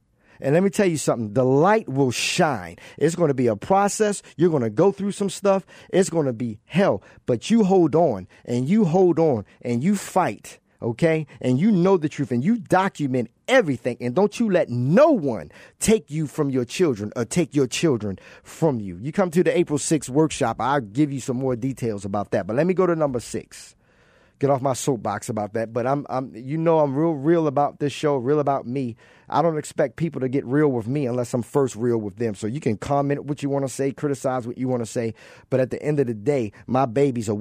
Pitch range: 125-170 Hz